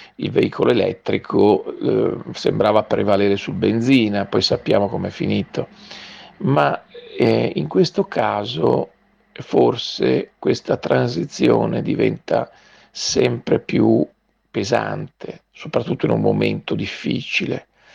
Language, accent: Italian, native